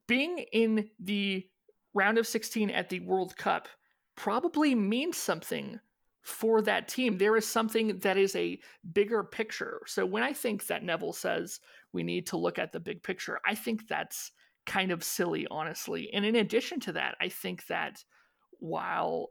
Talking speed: 170 wpm